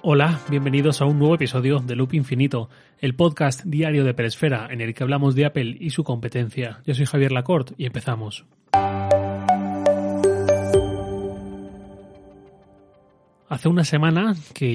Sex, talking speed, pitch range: male, 135 wpm, 125-150 Hz